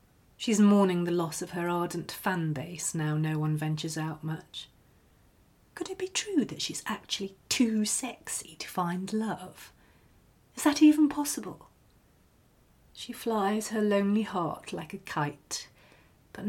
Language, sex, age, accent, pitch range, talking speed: English, female, 40-59, British, 155-220 Hz, 145 wpm